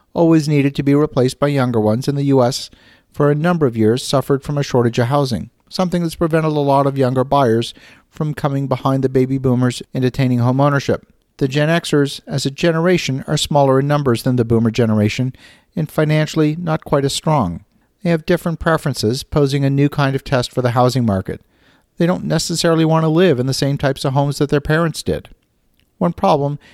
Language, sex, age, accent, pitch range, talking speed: English, male, 50-69, American, 125-150 Hz, 205 wpm